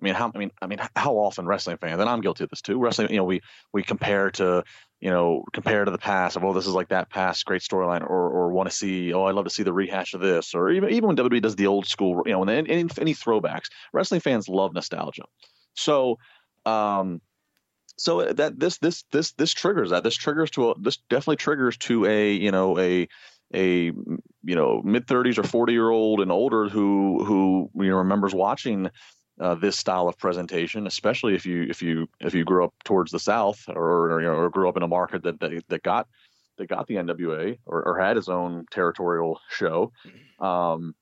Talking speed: 225 wpm